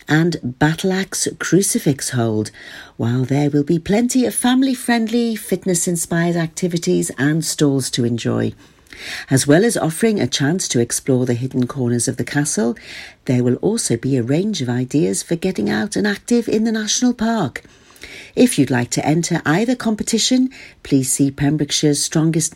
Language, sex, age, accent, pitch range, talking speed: English, female, 50-69, British, 135-215 Hz, 155 wpm